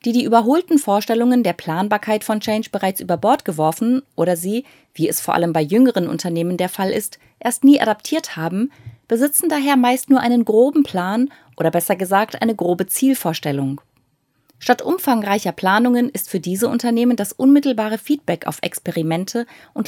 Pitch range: 165-245 Hz